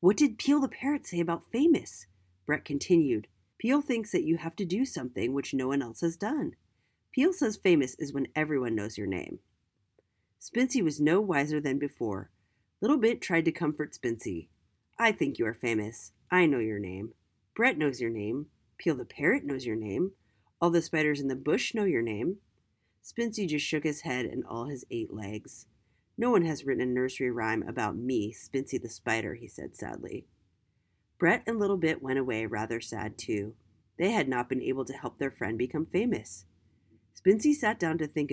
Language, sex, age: English, female, 30-49